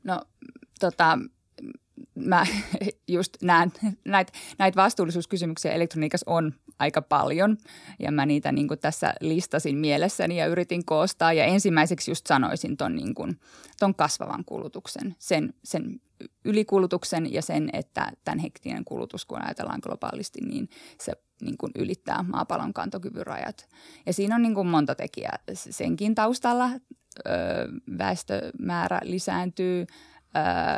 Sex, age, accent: female, 20-39, native